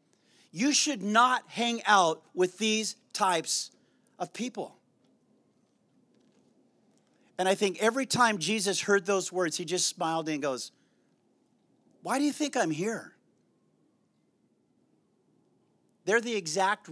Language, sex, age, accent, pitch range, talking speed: English, male, 40-59, American, 155-205 Hz, 115 wpm